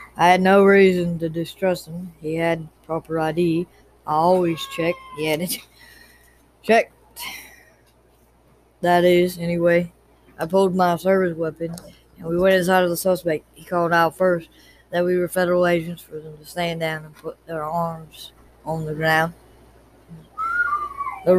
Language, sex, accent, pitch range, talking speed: English, female, American, 160-180 Hz, 155 wpm